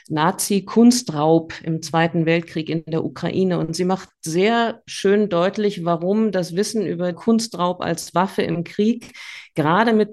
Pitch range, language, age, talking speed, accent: 175-200 Hz, German, 50-69, 140 wpm, German